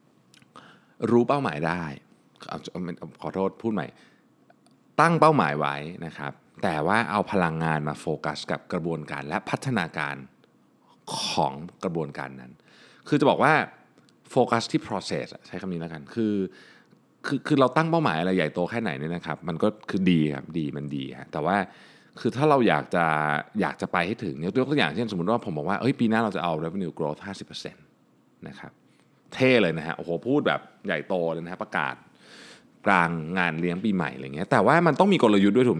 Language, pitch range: Thai, 85-120 Hz